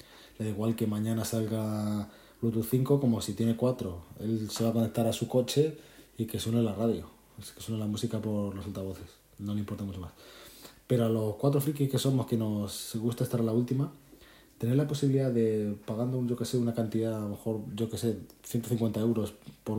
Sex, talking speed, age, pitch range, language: male, 215 wpm, 20-39, 105-125 Hz, Spanish